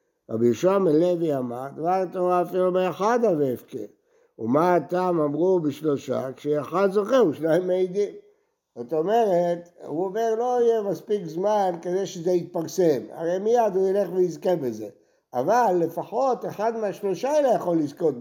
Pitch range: 155-200 Hz